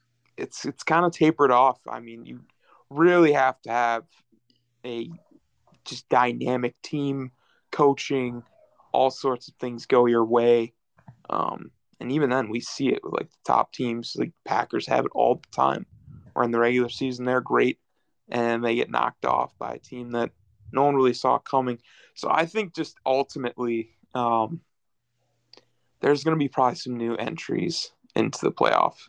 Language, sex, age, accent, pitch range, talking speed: English, male, 20-39, American, 120-145 Hz, 170 wpm